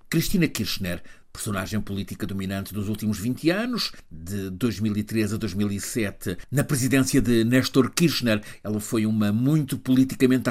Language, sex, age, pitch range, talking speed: Portuguese, male, 50-69, 105-160 Hz, 130 wpm